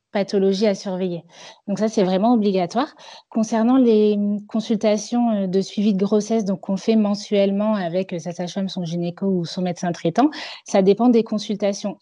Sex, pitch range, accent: female, 180-215 Hz, French